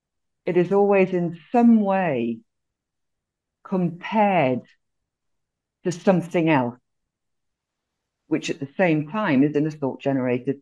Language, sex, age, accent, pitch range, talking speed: English, female, 50-69, British, 145-200 Hz, 105 wpm